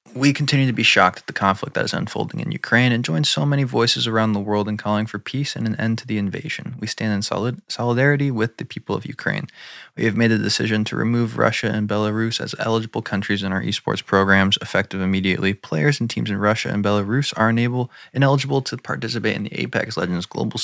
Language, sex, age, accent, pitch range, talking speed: English, male, 20-39, American, 100-120 Hz, 225 wpm